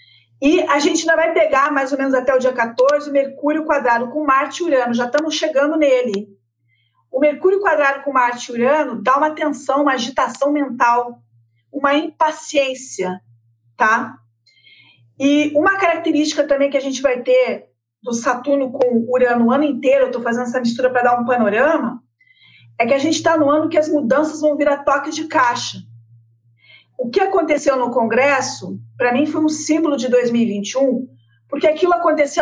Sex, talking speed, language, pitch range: female, 175 wpm, Portuguese, 240-300 Hz